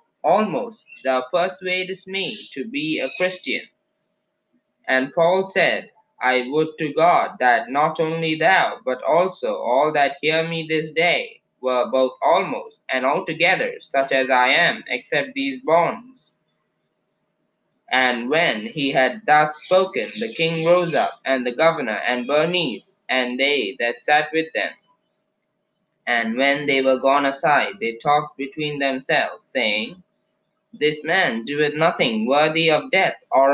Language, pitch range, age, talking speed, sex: English, 135-185 Hz, 20-39, 140 wpm, male